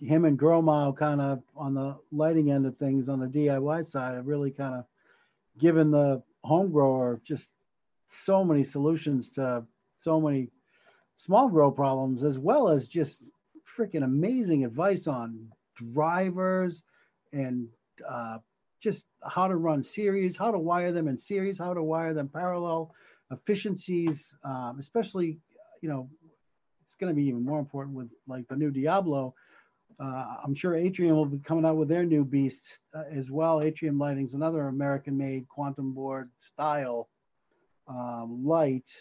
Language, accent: English, American